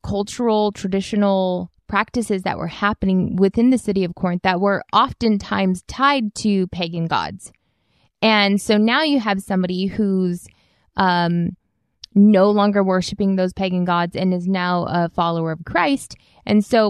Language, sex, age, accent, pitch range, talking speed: English, female, 20-39, American, 180-210 Hz, 145 wpm